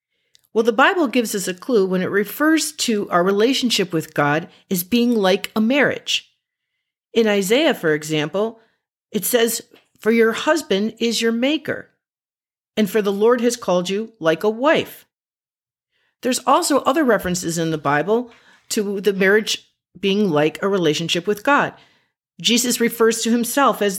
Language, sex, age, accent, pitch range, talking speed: English, female, 50-69, American, 185-245 Hz, 160 wpm